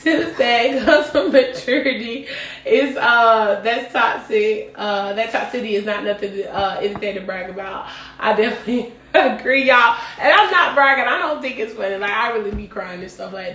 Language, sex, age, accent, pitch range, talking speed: English, female, 20-39, American, 195-260 Hz, 185 wpm